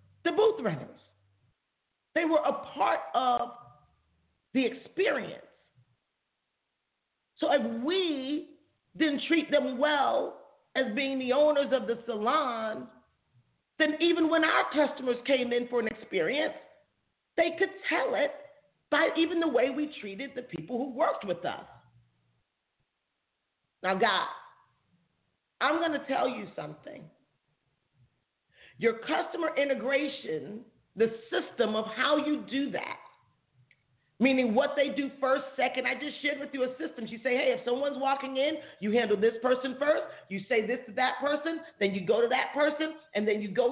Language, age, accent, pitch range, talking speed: English, 40-59, American, 220-290 Hz, 150 wpm